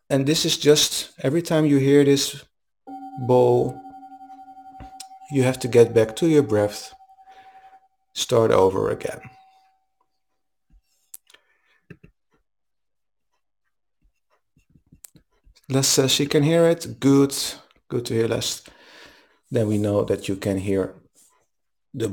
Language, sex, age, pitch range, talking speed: English, male, 50-69, 110-150 Hz, 110 wpm